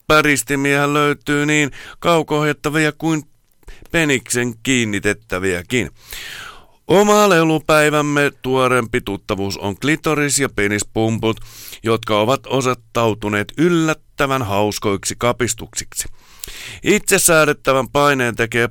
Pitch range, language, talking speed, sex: 105-140 Hz, Finnish, 80 wpm, male